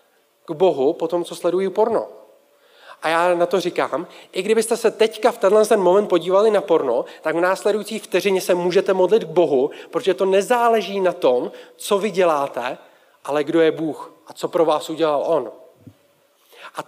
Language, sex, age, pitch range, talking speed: Czech, male, 40-59, 165-205 Hz, 180 wpm